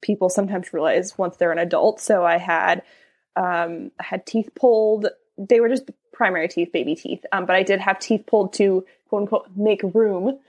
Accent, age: American, 20-39